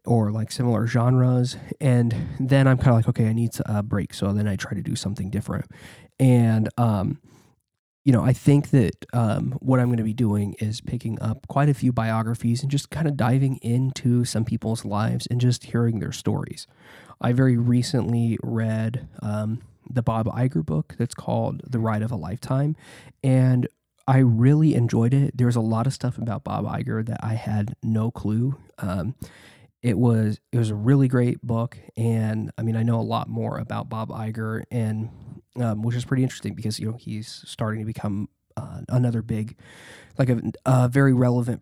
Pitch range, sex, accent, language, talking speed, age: 110-130 Hz, male, American, English, 190 wpm, 20-39